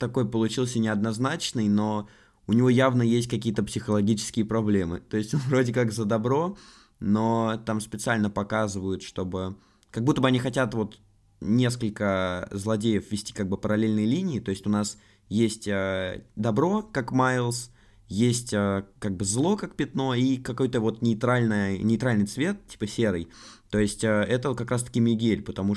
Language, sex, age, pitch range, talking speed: Russian, male, 20-39, 100-125 Hz, 155 wpm